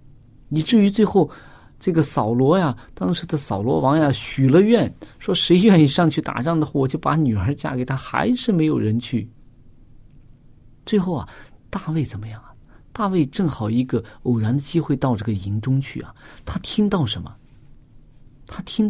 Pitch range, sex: 120-170 Hz, male